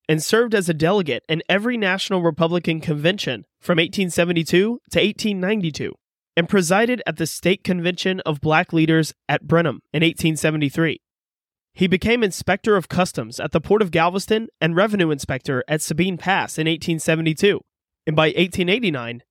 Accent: American